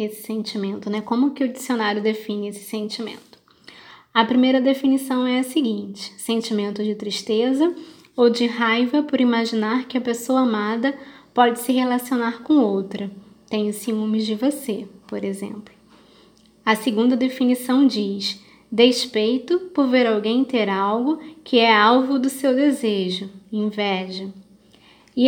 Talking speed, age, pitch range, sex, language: 135 wpm, 20-39, 210-255 Hz, female, Portuguese